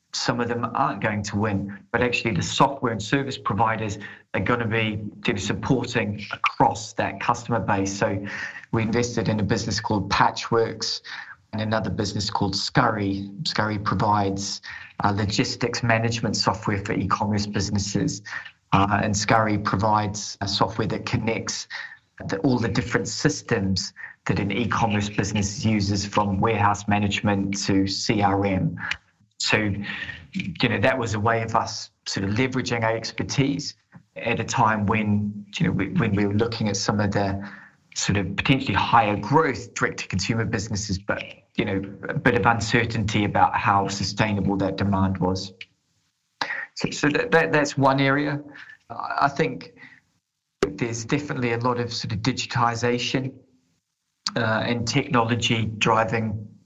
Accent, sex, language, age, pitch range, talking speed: British, male, English, 20-39, 100-120 Hz, 145 wpm